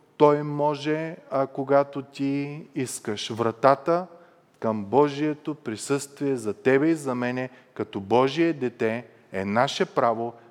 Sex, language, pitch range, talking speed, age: male, Bulgarian, 120-150 Hz, 120 wpm, 30-49